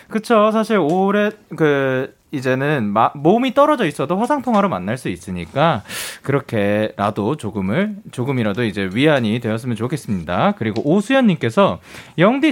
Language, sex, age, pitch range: Korean, male, 30-49, 140-230 Hz